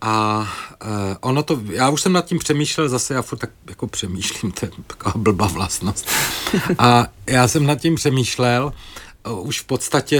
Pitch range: 100-125 Hz